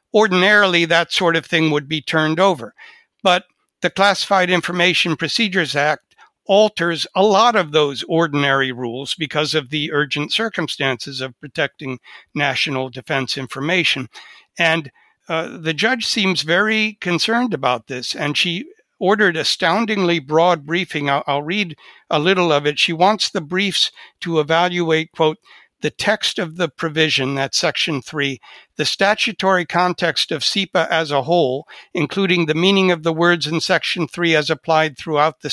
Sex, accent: male, American